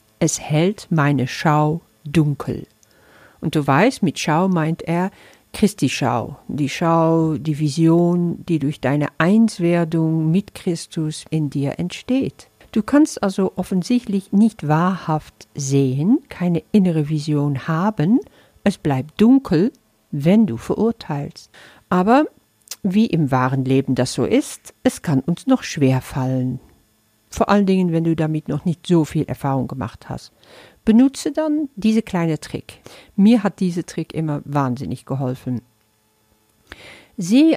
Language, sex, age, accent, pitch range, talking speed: German, female, 50-69, German, 145-195 Hz, 135 wpm